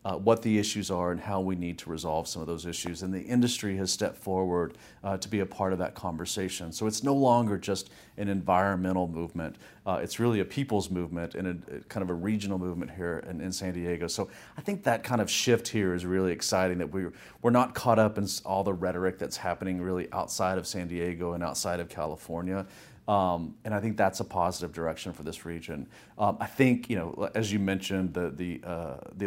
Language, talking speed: English, 230 wpm